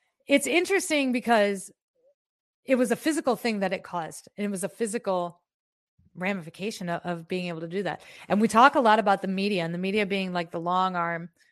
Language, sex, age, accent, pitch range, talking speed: English, female, 30-49, American, 180-225 Hz, 210 wpm